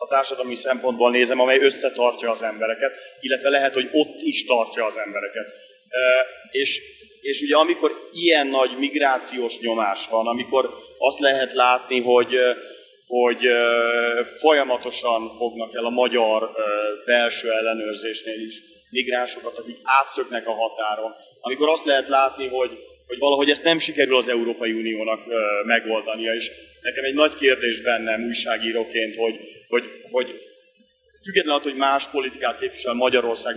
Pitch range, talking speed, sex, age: 115-155 Hz, 130 wpm, male, 30-49